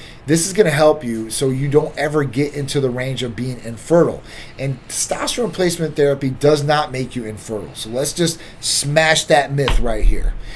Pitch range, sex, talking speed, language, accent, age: 120-150 Hz, male, 190 wpm, English, American, 30-49